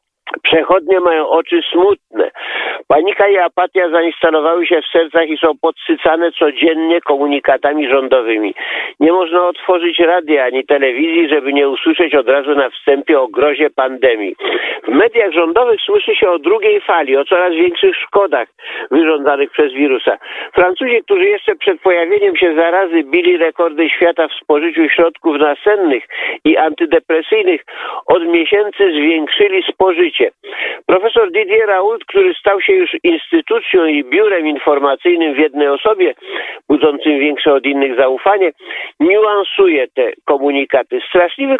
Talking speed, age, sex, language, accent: 130 wpm, 50-69, male, Polish, native